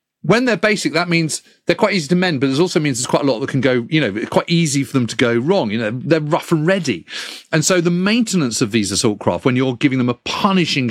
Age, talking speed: 40-59, 275 wpm